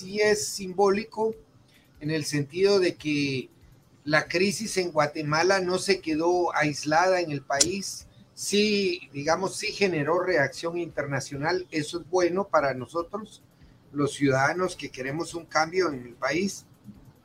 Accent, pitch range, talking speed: Mexican, 150-195 Hz, 135 wpm